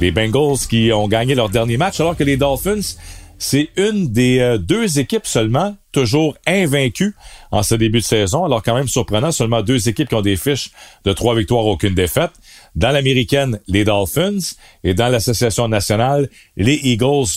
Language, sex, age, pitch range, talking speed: French, male, 40-59, 100-140 Hz, 175 wpm